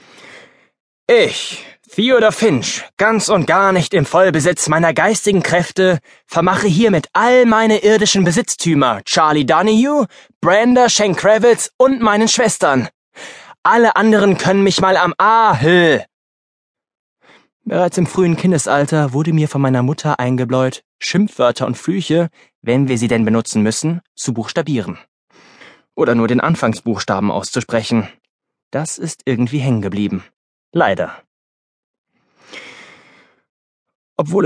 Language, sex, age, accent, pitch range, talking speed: German, male, 20-39, German, 125-175 Hz, 115 wpm